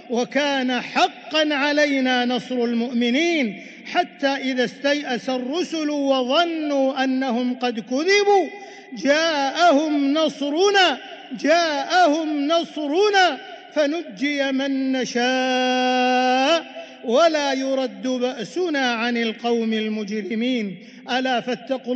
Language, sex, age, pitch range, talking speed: English, male, 50-69, 235-295 Hz, 75 wpm